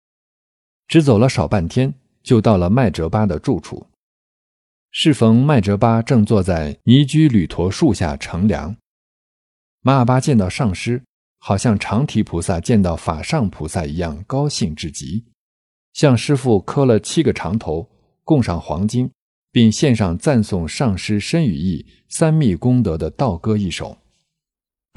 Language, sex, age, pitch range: Chinese, male, 50-69, 90-130 Hz